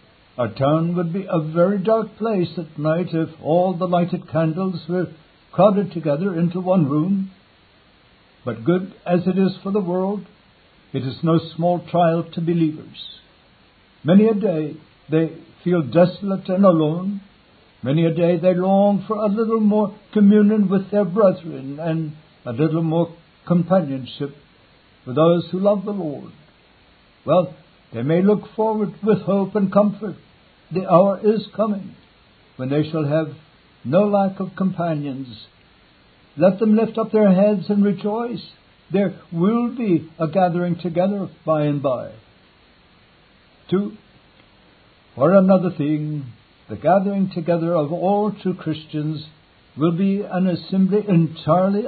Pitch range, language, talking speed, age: 155-195 Hz, English, 140 wpm, 60-79